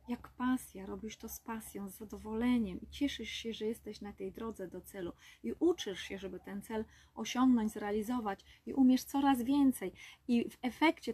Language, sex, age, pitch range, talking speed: Polish, female, 20-39, 195-245 Hz, 180 wpm